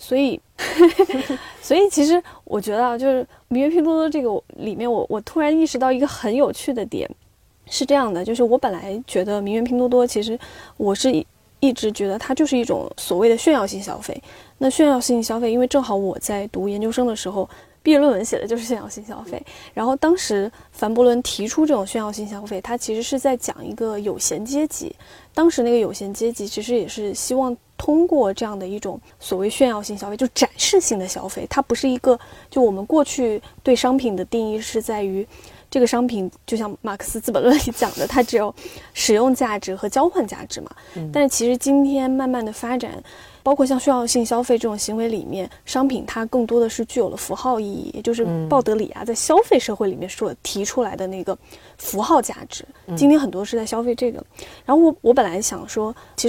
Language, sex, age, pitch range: Chinese, female, 20-39, 210-265 Hz